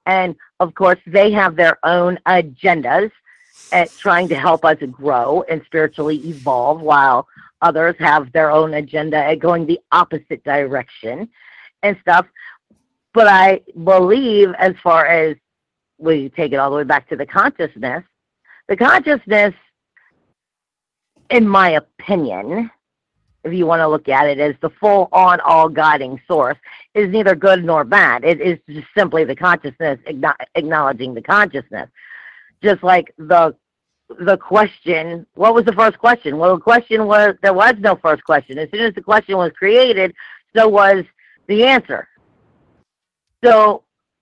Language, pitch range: English, 160-210 Hz